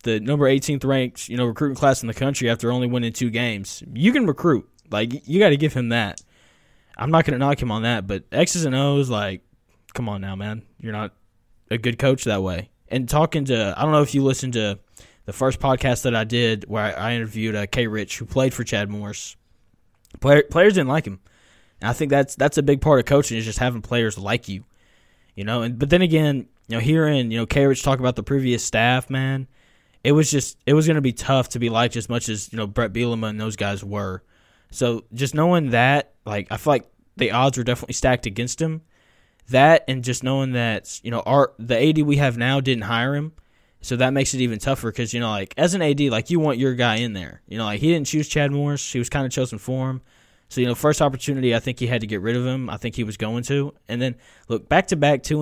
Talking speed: 250 wpm